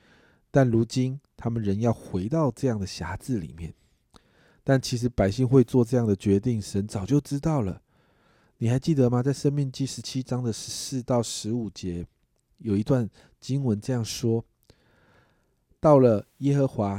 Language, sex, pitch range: Chinese, male, 100-140 Hz